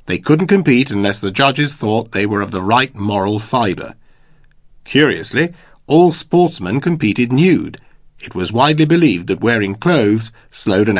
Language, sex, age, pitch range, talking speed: English, male, 50-69, 105-150 Hz, 155 wpm